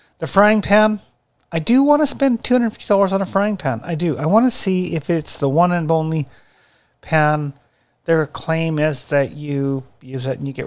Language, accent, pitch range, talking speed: English, American, 130-175 Hz, 220 wpm